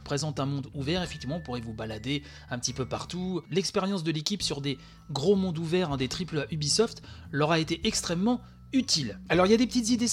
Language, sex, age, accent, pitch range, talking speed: French, male, 30-49, French, 140-200 Hz, 215 wpm